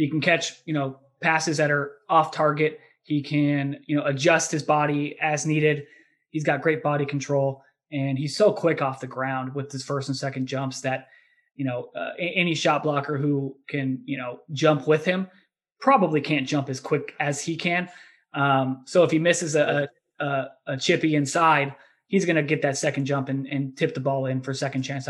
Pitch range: 140-165 Hz